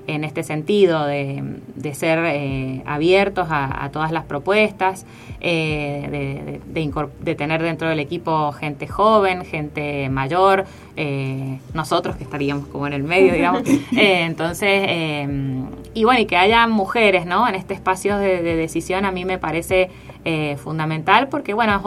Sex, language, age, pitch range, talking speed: female, Spanish, 20-39, 155-190 Hz, 165 wpm